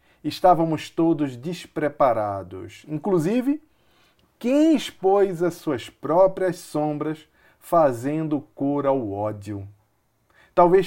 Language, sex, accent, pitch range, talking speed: Portuguese, male, Brazilian, 115-175 Hz, 85 wpm